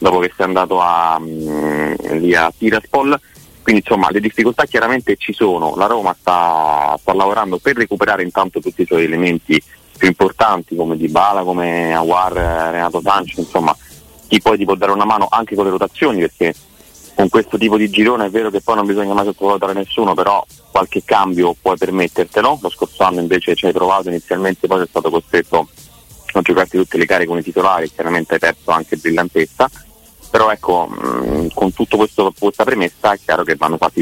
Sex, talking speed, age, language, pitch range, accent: male, 180 wpm, 30-49, Italian, 80-95 Hz, native